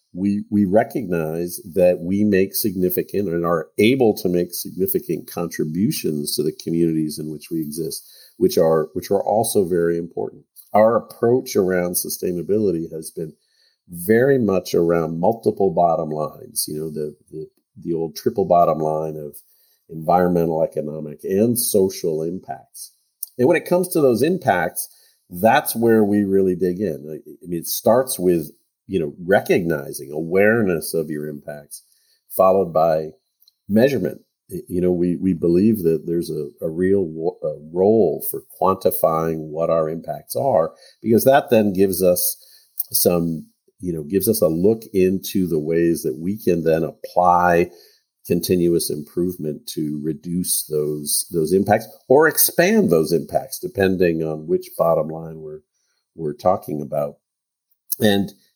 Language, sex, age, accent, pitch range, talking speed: English, male, 50-69, American, 80-100 Hz, 145 wpm